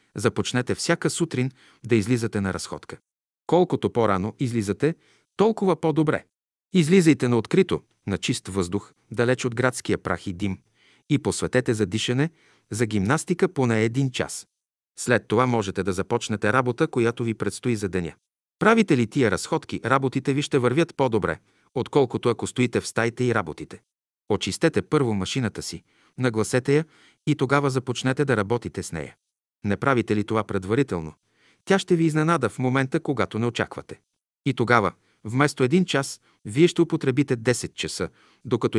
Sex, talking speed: male, 150 wpm